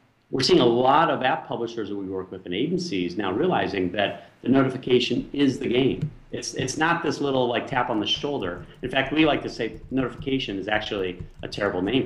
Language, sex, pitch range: English, male, 95-145 Hz